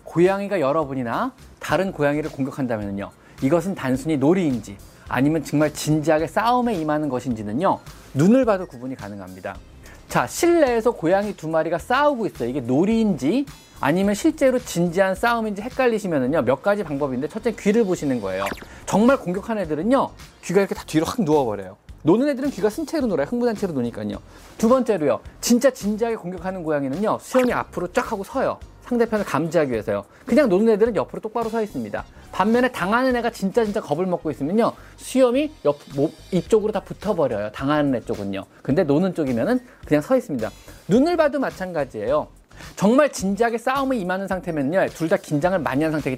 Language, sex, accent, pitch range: Korean, male, native, 145-235 Hz